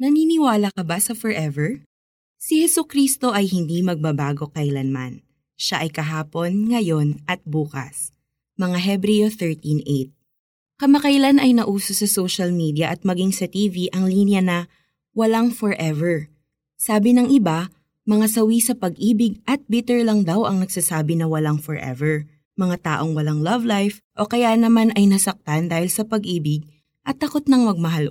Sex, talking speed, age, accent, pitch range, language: female, 145 wpm, 20-39, native, 155-225 Hz, Filipino